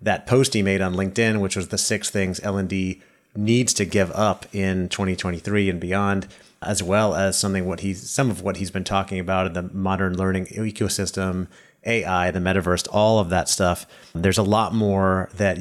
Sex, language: male, English